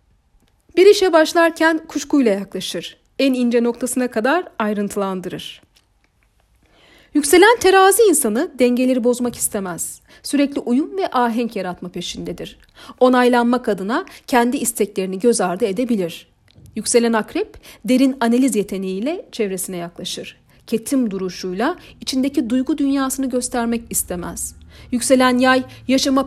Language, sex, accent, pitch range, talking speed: Turkish, female, native, 205-270 Hz, 105 wpm